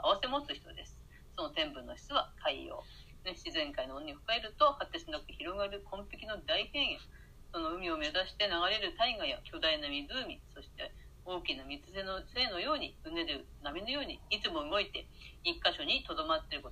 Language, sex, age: Japanese, female, 40-59